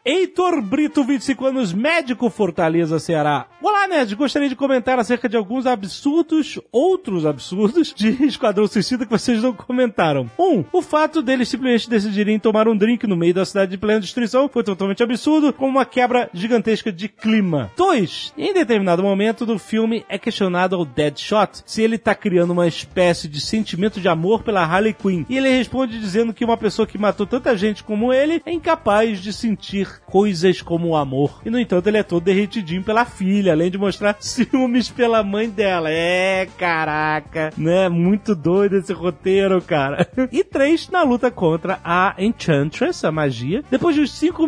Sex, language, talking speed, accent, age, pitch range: male, Portuguese, 175 wpm, Brazilian, 40-59, 180-250 Hz